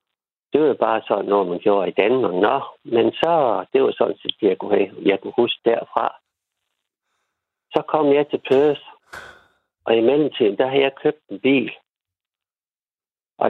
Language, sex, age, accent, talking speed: Danish, male, 60-79, native, 165 wpm